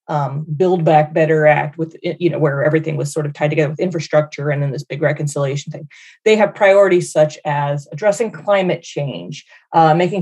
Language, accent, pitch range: English, American, 155-195 Hz